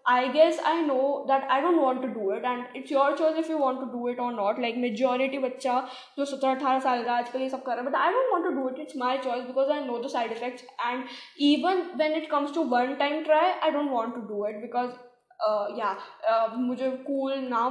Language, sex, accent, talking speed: Hindi, female, native, 245 wpm